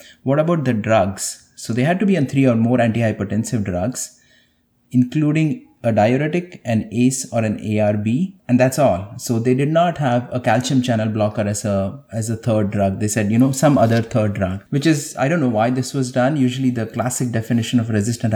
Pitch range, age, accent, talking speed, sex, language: 105-130 Hz, 30-49, Indian, 205 wpm, male, English